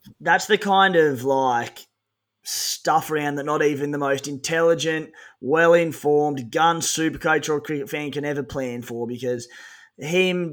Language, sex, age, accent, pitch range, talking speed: English, male, 20-39, Australian, 150-190 Hz, 140 wpm